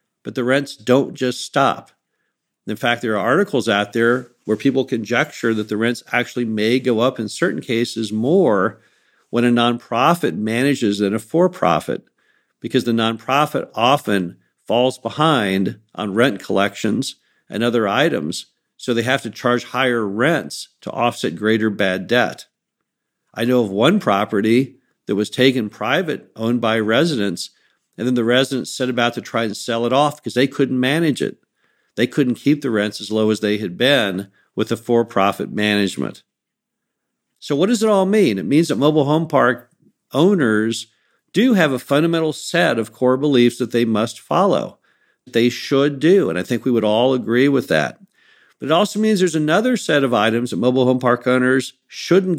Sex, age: male, 50-69